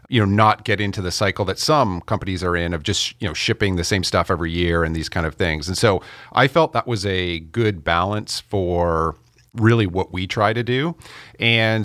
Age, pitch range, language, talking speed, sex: 40-59, 90-110 Hz, English, 225 wpm, male